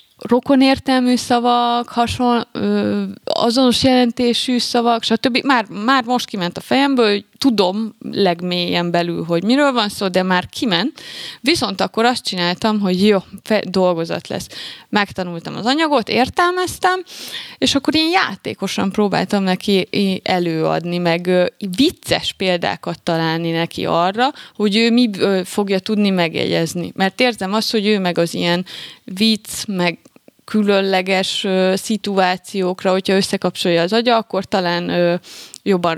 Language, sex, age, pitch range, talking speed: Hungarian, female, 20-39, 185-250 Hz, 125 wpm